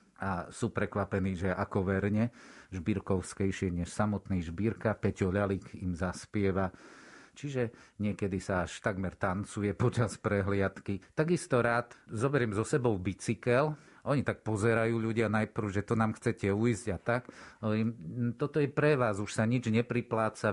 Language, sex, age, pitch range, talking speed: Slovak, male, 50-69, 95-115 Hz, 140 wpm